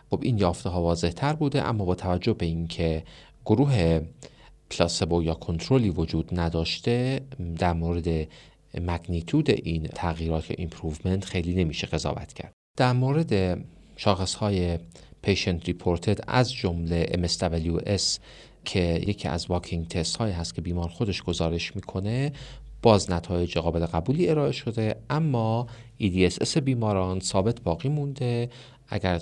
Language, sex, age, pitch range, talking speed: Persian, male, 40-59, 85-115 Hz, 130 wpm